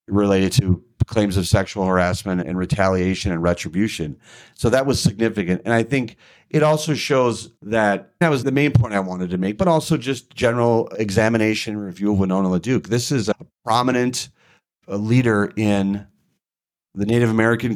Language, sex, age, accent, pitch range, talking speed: English, male, 40-59, American, 95-115 Hz, 160 wpm